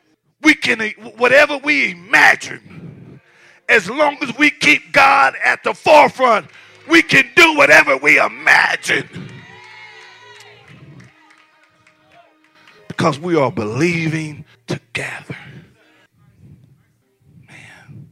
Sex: male